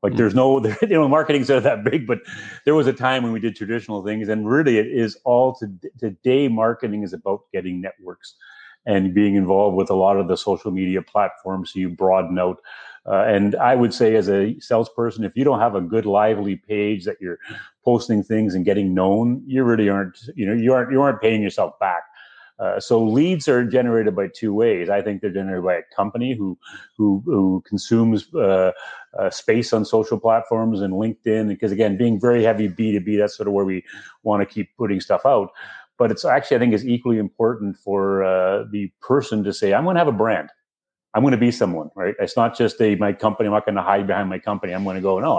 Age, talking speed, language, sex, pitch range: 30-49, 225 wpm, English, male, 100-115 Hz